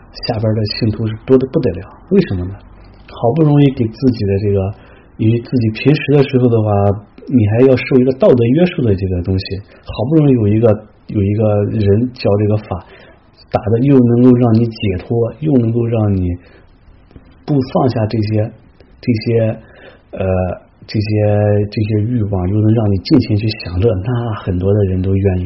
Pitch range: 95-120 Hz